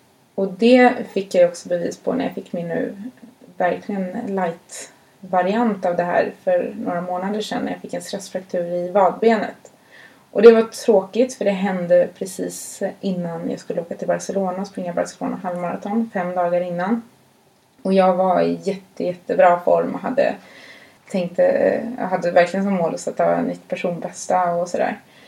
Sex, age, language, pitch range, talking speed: female, 20-39, Swedish, 180-235 Hz, 170 wpm